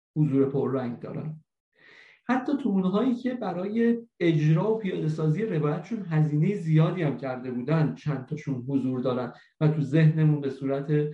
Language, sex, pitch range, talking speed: Persian, male, 140-180 Hz, 145 wpm